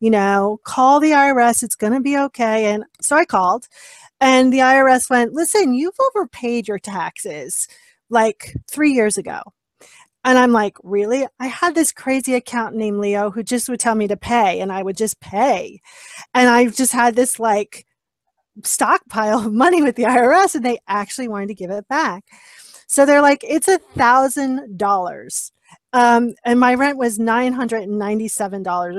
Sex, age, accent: female, 30-49, American